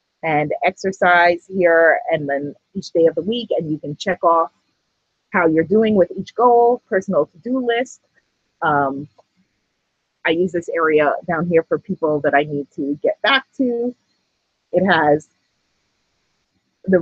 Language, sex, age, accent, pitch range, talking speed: English, female, 30-49, American, 165-240 Hz, 150 wpm